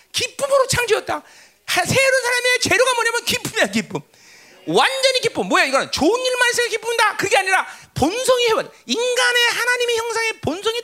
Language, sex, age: Korean, male, 40-59